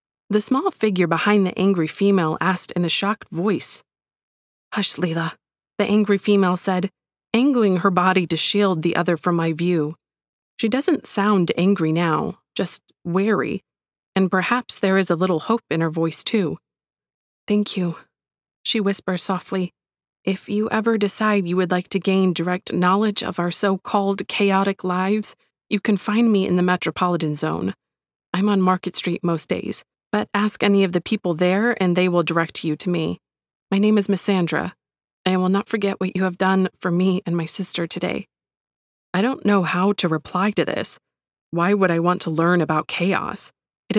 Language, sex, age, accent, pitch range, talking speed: English, female, 20-39, American, 170-205 Hz, 180 wpm